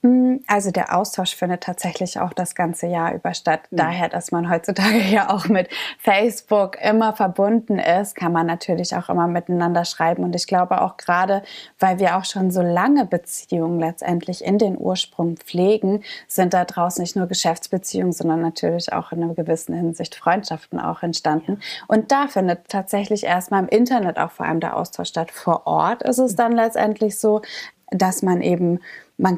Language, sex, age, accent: German, female, 20-39, German